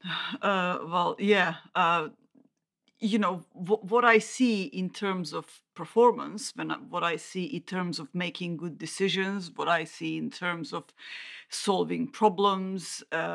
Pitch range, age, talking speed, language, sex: 175-235 Hz, 40-59, 150 wpm, English, female